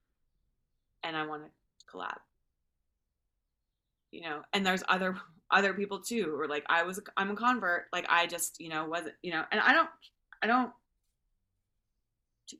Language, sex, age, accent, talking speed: English, female, 20-39, American, 160 wpm